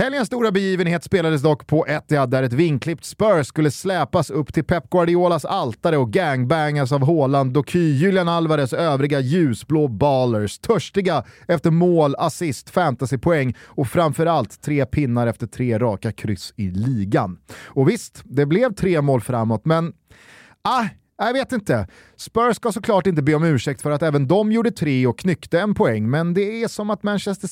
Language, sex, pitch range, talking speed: Swedish, male, 130-190 Hz, 170 wpm